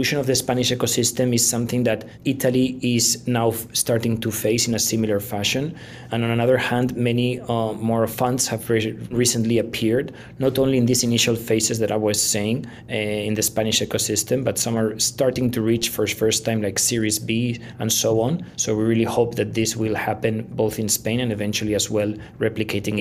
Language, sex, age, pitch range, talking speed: Italian, male, 20-39, 110-125 Hz, 200 wpm